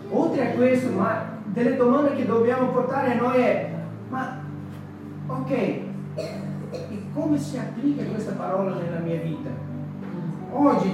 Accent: native